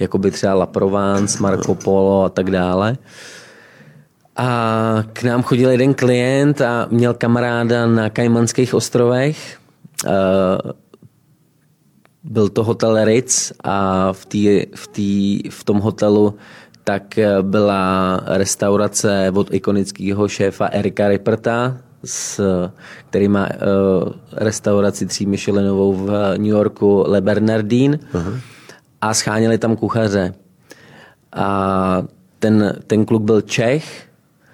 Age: 20-39